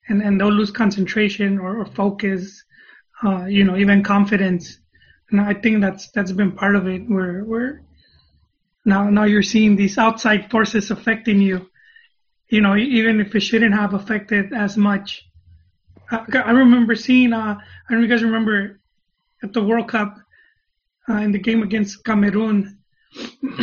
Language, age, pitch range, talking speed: English, 30-49, 200-235 Hz, 165 wpm